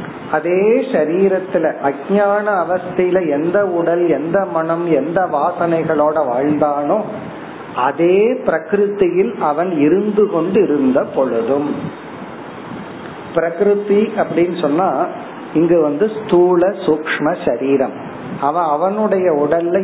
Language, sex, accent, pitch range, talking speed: Tamil, male, native, 150-205 Hz, 90 wpm